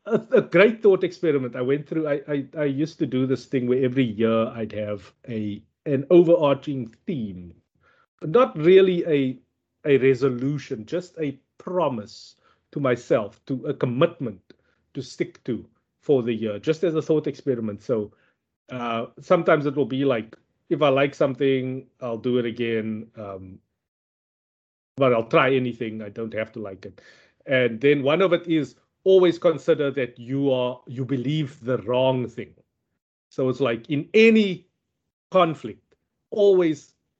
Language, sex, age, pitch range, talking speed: English, male, 30-49, 115-155 Hz, 160 wpm